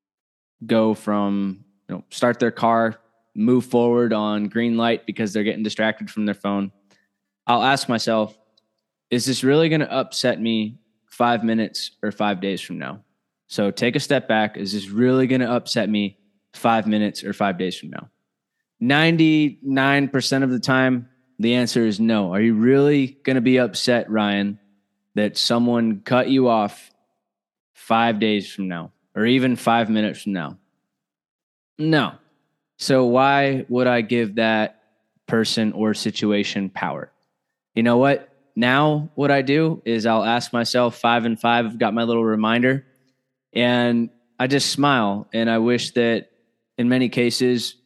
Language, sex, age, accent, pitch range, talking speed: English, male, 20-39, American, 105-120 Hz, 155 wpm